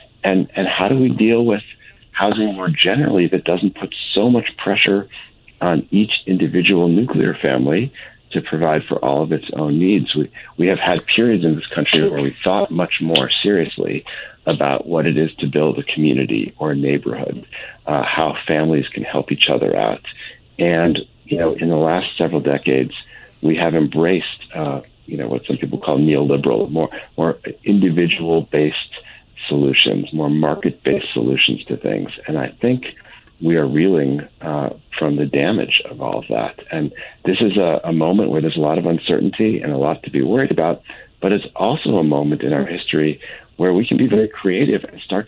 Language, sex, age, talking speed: English, male, 60-79, 185 wpm